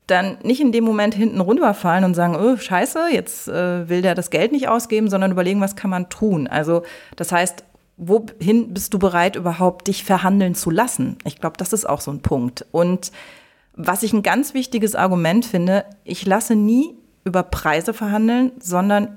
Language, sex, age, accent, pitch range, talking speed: German, female, 30-49, German, 175-220 Hz, 190 wpm